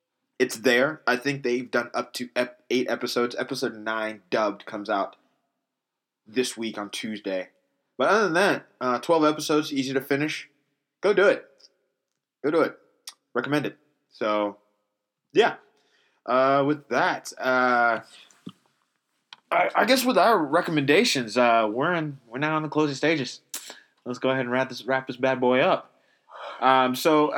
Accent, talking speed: American, 160 wpm